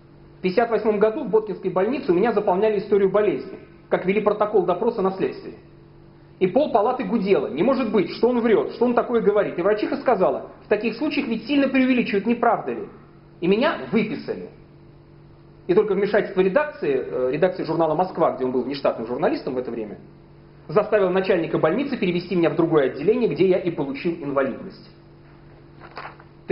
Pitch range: 185-235 Hz